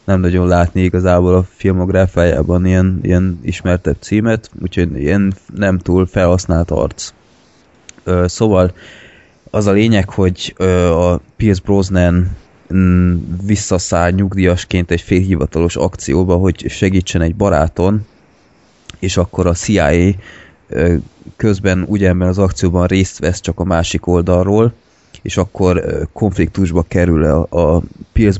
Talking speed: 115 wpm